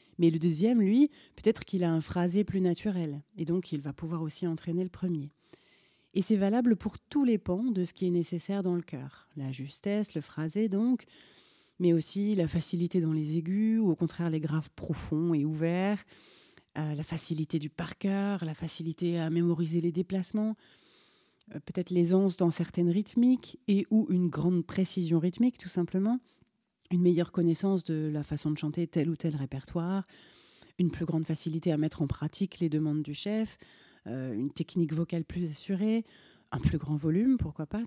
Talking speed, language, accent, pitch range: 185 wpm, French, French, 160-195 Hz